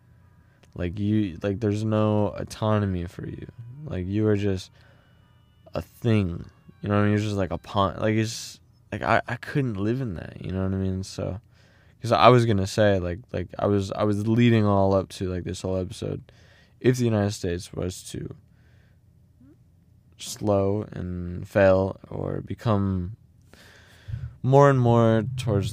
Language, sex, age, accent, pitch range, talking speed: English, male, 20-39, American, 90-110 Hz, 170 wpm